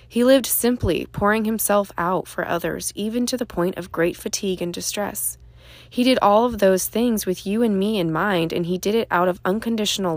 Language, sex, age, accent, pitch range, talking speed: English, female, 20-39, American, 170-200 Hz, 210 wpm